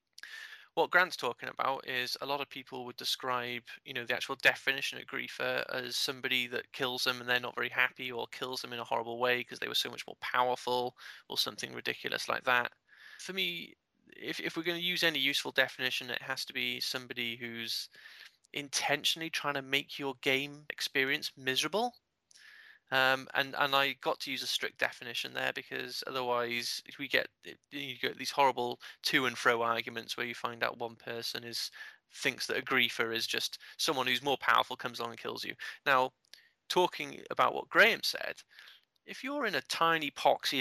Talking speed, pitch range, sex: 195 wpm, 120-140 Hz, male